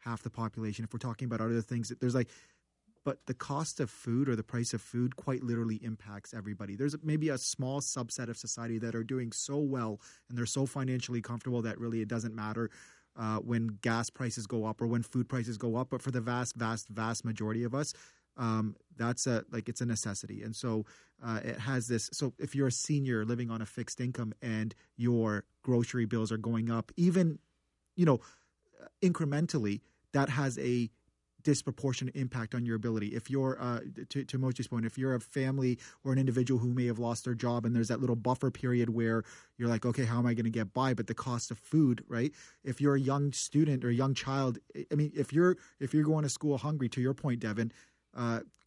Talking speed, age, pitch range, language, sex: 220 wpm, 30-49, 115-135 Hz, English, male